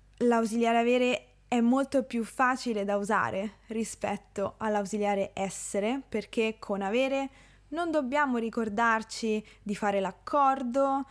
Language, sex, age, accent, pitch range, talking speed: Italian, female, 20-39, native, 205-250 Hz, 110 wpm